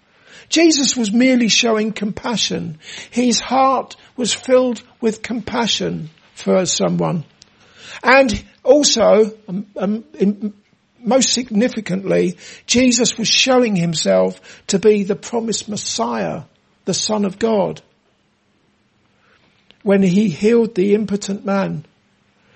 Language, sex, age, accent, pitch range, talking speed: English, male, 60-79, British, 195-240 Hz, 105 wpm